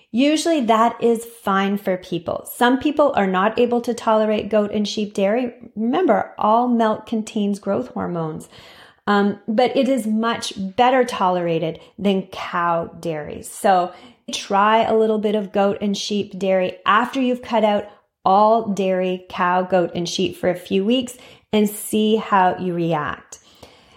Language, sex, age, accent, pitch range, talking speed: English, female, 30-49, American, 185-235 Hz, 155 wpm